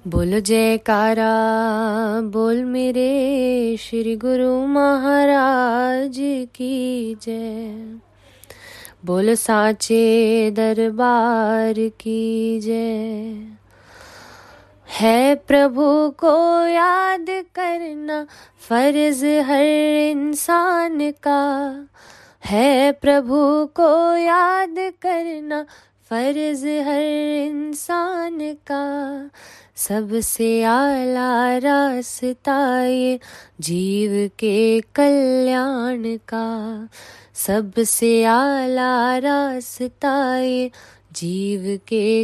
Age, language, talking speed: 20-39, Hindi, 65 wpm